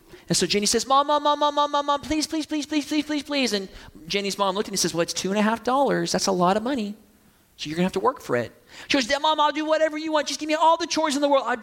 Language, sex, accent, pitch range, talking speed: English, male, American, 150-205 Hz, 315 wpm